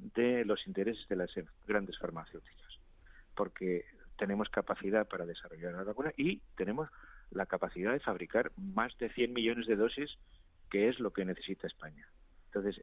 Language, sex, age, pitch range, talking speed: Spanish, male, 40-59, 95-130 Hz, 155 wpm